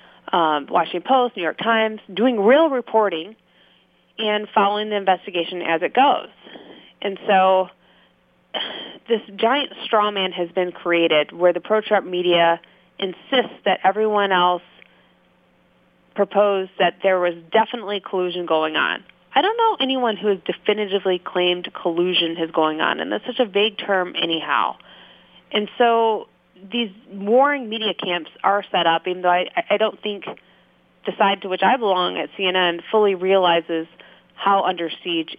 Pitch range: 175-210 Hz